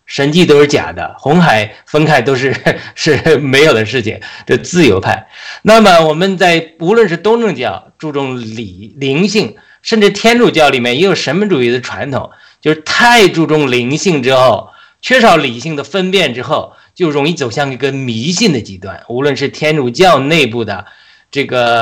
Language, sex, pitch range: Chinese, male, 130-195 Hz